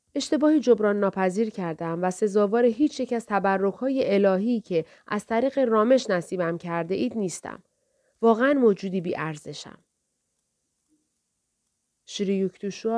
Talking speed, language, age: 110 wpm, Persian, 30-49